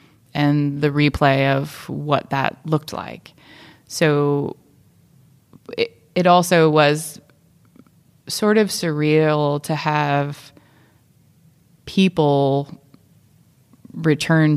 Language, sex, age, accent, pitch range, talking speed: English, female, 20-39, American, 140-155 Hz, 80 wpm